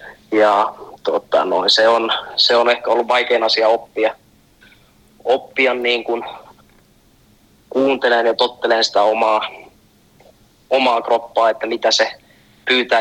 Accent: native